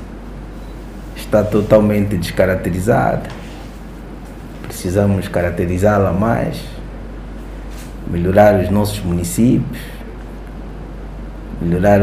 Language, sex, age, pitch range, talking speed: Portuguese, male, 50-69, 90-105 Hz, 55 wpm